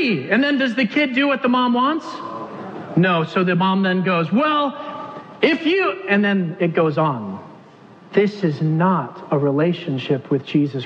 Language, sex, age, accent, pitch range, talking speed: English, male, 40-59, American, 150-190 Hz, 170 wpm